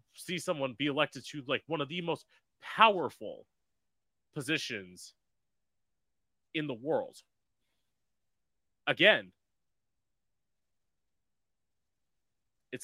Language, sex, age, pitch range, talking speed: English, male, 30-49, 95-150 Hz, 80 wpm